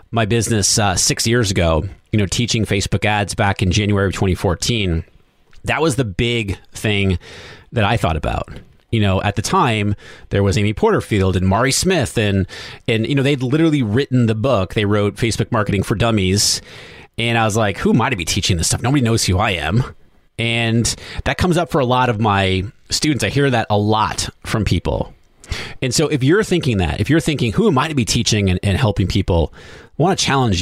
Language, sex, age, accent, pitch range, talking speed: English, male, 30-49, American, 100-130 Hz, 215 wpm